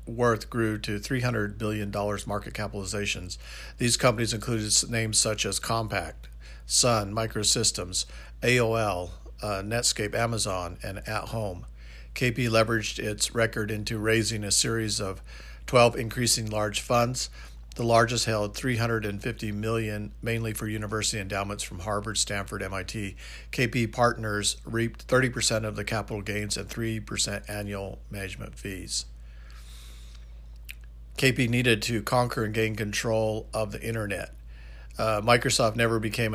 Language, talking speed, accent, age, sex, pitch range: English, 125 wpm, American, 50-69, male, 100-115 Hz